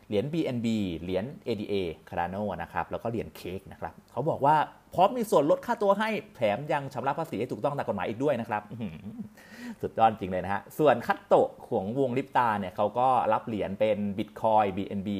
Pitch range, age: 100-135 Hz, 30-49